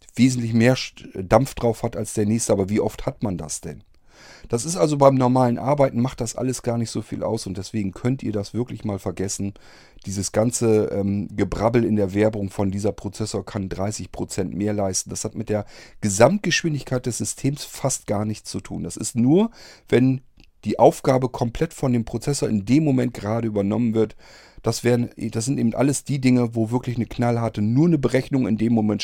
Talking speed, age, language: 200 wpm, 40-59, German